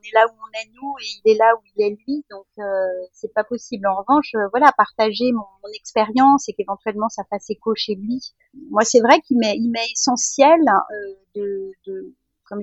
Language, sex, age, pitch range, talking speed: French, female, 40-59, 205-265 Hz, 215 wpm